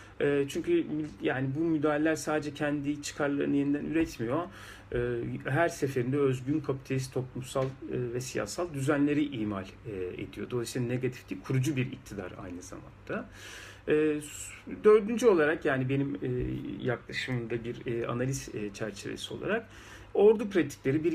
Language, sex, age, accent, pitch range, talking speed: Turkish, male, 40-59, native, 120-160 Hz, 110 wpm